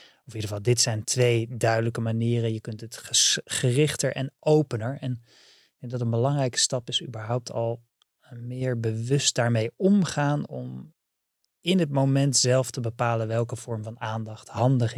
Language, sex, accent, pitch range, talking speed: Dutch, male, Dutch, 115-150 Hz, 170 wpm